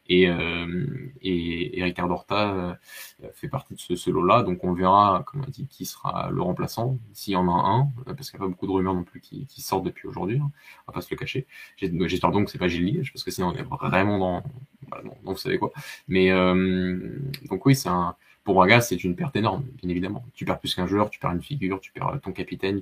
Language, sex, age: French, male, 20-39